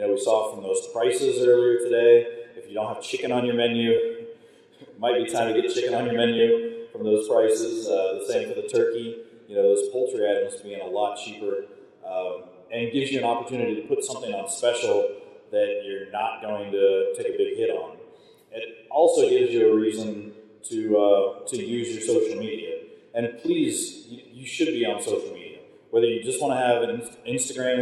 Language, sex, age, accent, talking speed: English, male, 30-49, American, 205 wpm